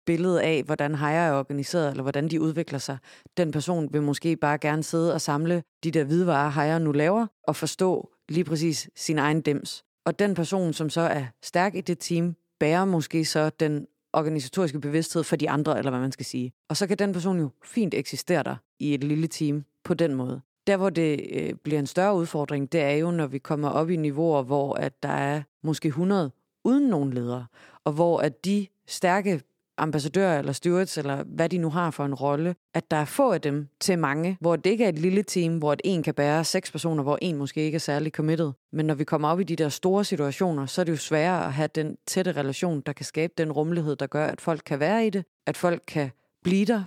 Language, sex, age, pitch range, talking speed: Danish, female, 30-49, 145-175 Hz, 235 wpm